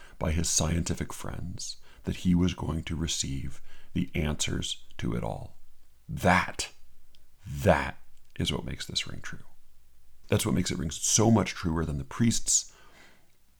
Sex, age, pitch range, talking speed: male, 40-59, 65-85 Hz, 150 wpm